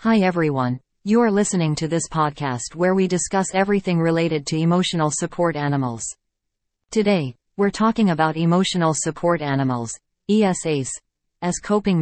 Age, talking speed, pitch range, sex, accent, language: 40-59, 130 wpm, 145-180 Hz, female, American, English